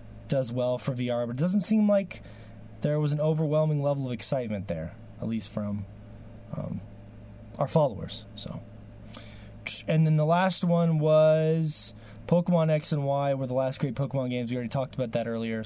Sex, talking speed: male, 175 wpm